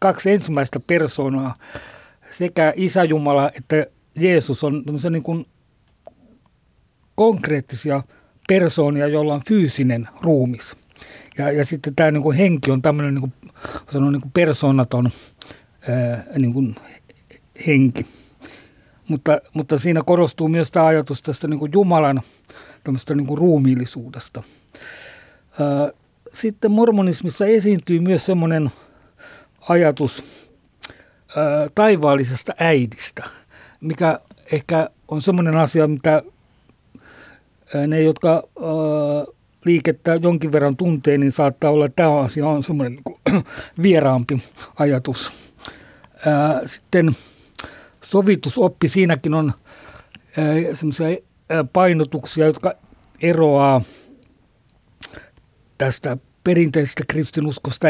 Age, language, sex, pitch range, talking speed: 60-79, Finnish, male, 140-165 Hz, 90 wpm